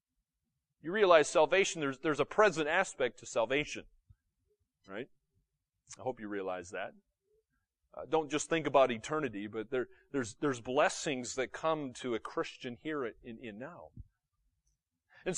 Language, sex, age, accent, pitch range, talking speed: English, male, 30-49, American, 125-190 Hz, 145 wpm